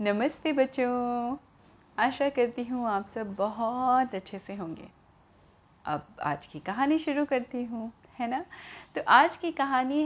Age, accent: 30-49, native